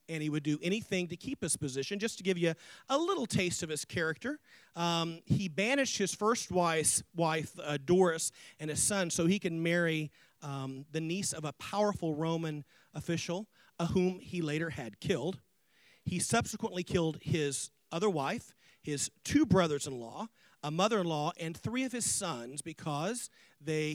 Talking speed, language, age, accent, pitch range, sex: 170 wpm, English, 40-59, American, 150-195 Hz, male